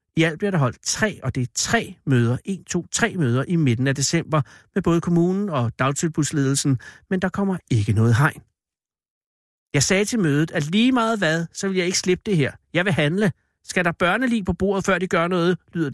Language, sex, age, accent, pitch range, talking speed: Danish, male, 60-79, native, 140-195 Hz, 220 wpm